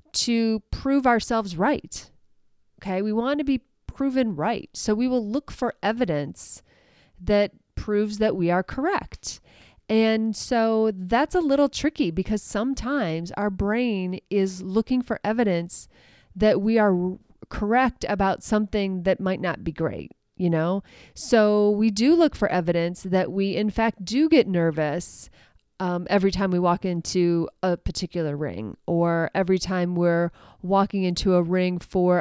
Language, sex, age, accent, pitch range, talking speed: English, female, 30-49, American, 180-225 Hz, 150 wpm